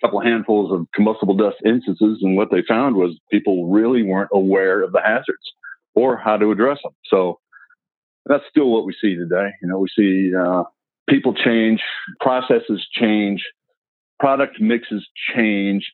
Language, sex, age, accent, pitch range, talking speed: English, male, 50-69, American, 95-110 Hz, 160 wpm